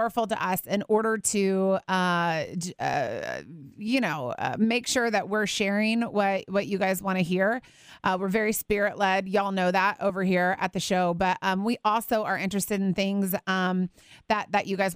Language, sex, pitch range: English, female, 185-225 Hz